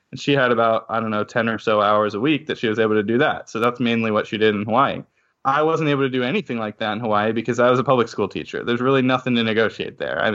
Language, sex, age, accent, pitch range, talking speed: English, male, 20-39, American, 110-140 Hz, 295 wpm